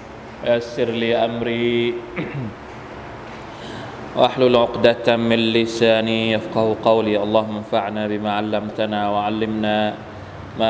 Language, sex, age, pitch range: Thai, male, 20-39, 110-125 Hz